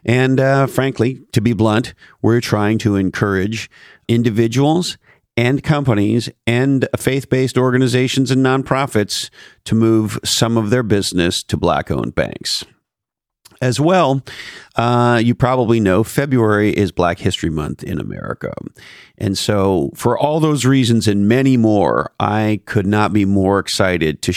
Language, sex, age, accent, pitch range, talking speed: English, male, 50-69, American, 105-130 Hz, 140 wpm